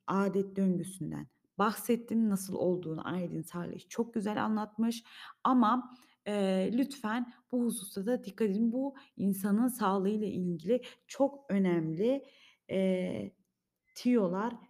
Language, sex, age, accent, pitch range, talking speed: Turkish, female, 30-49, native, 185-225 Hz, 105 wpm